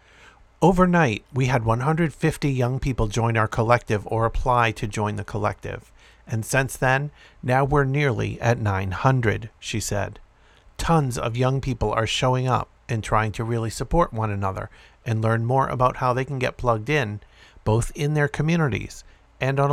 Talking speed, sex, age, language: 165 wpm, male, 50-69, English